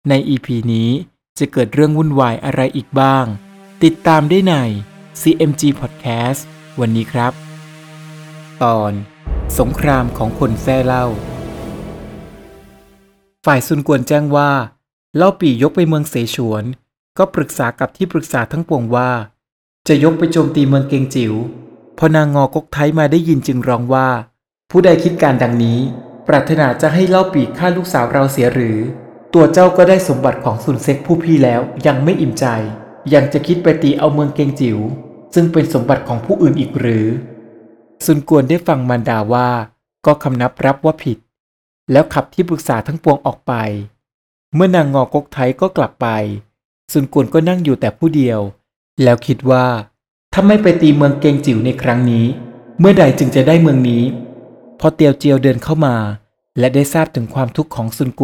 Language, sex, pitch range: Thai, male, 120-155 Hz